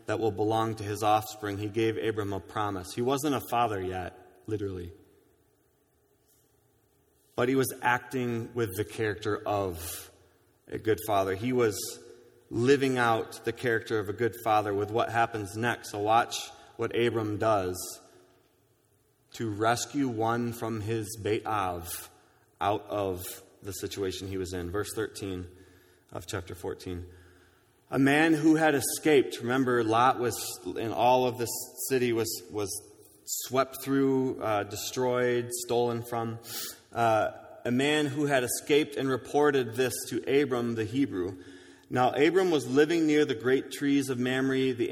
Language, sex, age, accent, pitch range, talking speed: English, male, 30-49, American, 105-130 Hz, 145 wpm